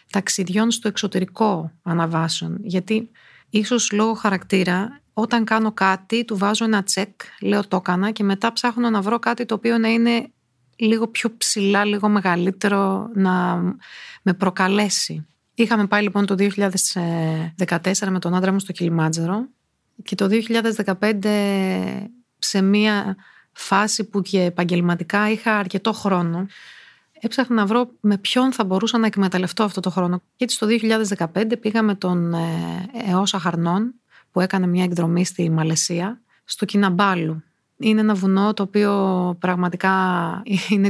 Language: Greek